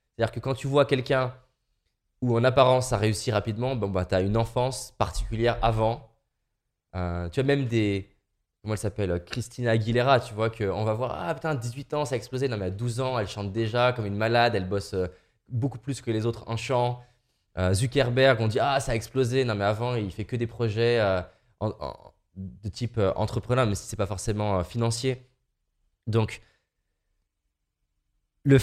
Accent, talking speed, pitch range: French, 195 wpm, 100-125 Hz